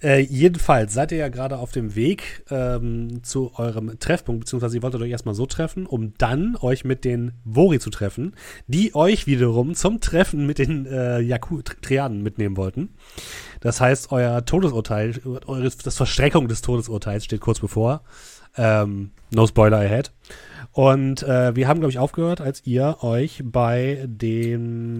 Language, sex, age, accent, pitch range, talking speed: German, male, 30-49, German, 110-135 Hz, 160 wpm